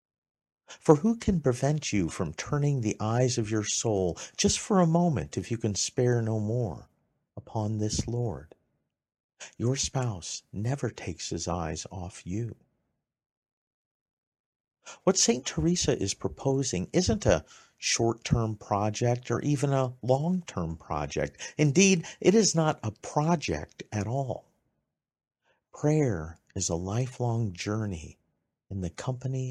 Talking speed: 130 wpm